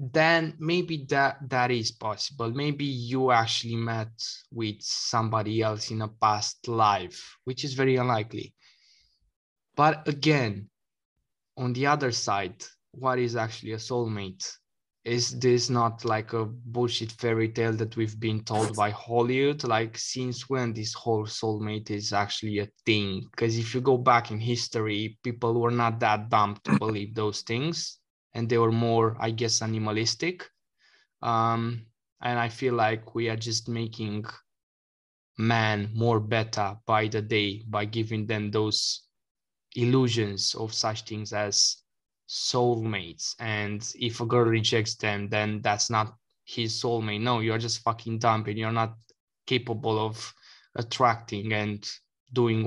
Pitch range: 110-120 Hz